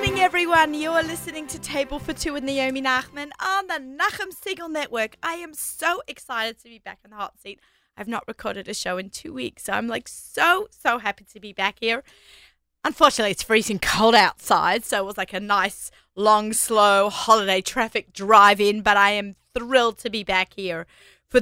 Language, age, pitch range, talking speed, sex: English, 20-39, 195-295 Hz, 200 wpm, female